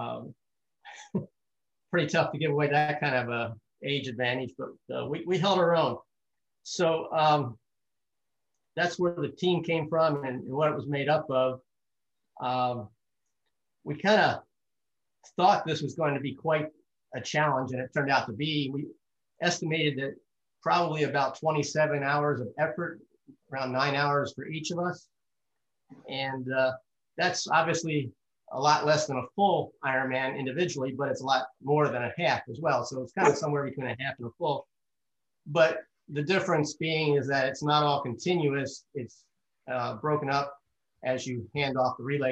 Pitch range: 130-155 Hz